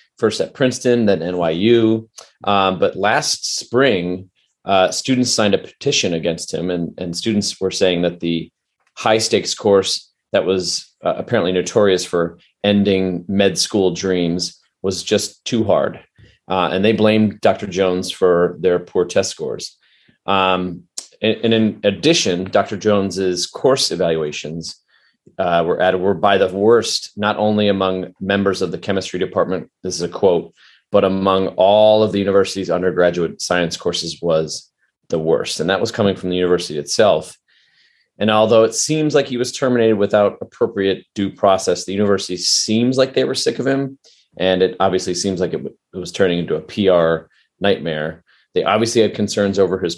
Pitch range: 90-105 Hz